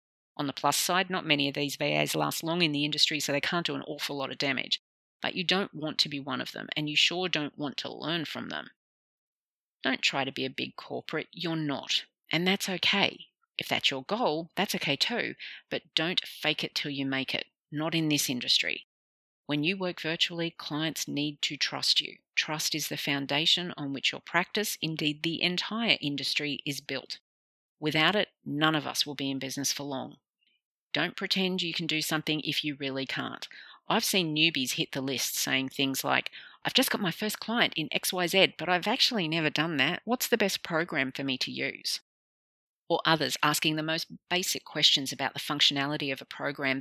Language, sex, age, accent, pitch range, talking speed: English, female, 40-59, Australian, 140-175 Hz, 205 wpm